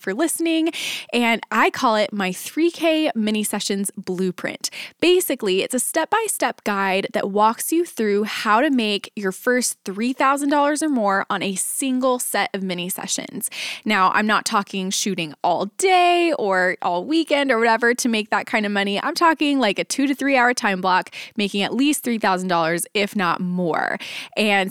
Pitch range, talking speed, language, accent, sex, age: 195-255 Hz, 170 wpm, English, American, female, 20-39